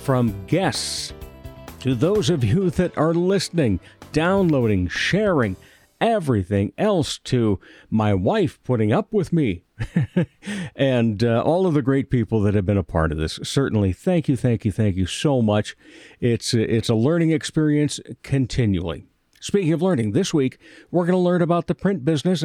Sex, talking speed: male, 165 wpm